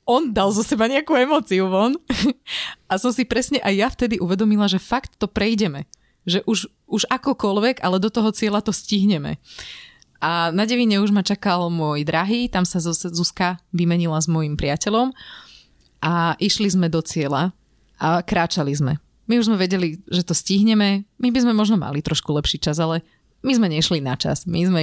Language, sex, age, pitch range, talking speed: Slovak, female, 30-49, 165-210 Hz, 180 wpm